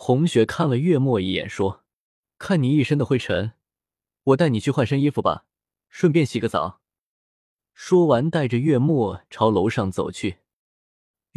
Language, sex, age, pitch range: Chinese, male, 20-39, 105-160 Hz